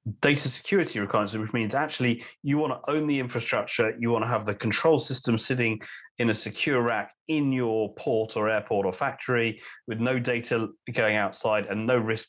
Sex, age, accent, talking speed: male, 30-49, British, 190 wpm